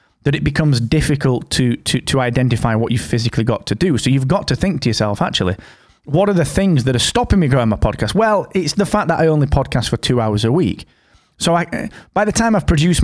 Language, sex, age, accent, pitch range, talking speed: English, male, 30-49, British, 115-155 Hz, 245 wpm